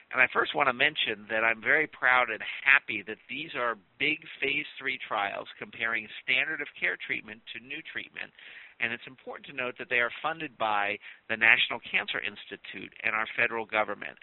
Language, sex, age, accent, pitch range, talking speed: English, male, 50-69, American, 110-130 Hz, 190 wpm